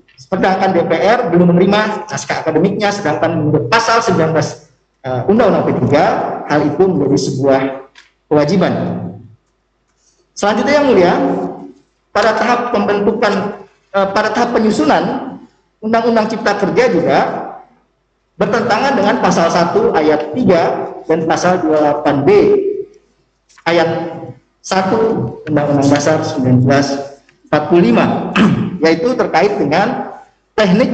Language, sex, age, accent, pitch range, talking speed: Indonesian, male, 50-69, native, 160-220 Hz, 95 wpm